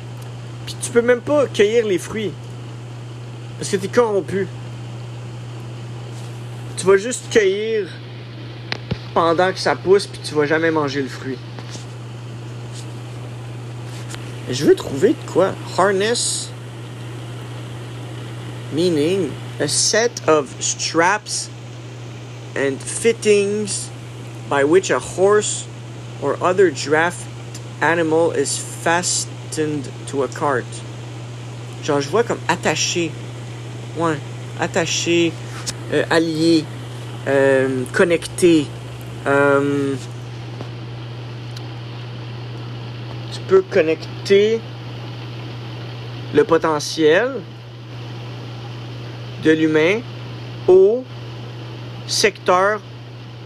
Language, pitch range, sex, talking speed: English, 120-150 Hz, male, 80 wpm